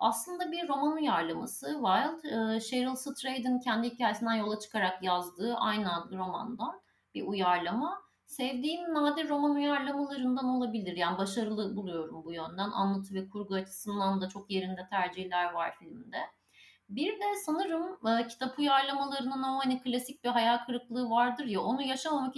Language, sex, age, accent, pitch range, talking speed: Turkish, female, 30-49, native, 195-260 Hz, 140 wpm